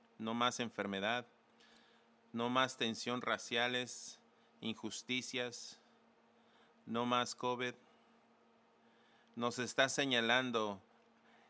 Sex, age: male, 40-59